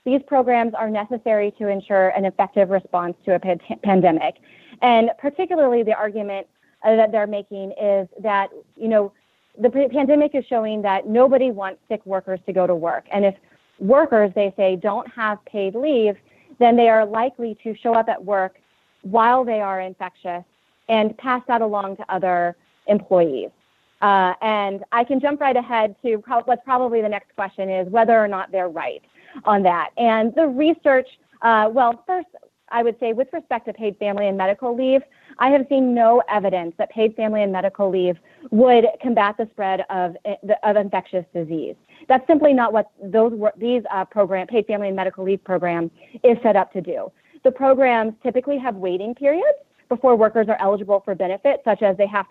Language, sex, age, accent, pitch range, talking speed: English, female, 30-49, American, 195-245 Hz, 185 wpm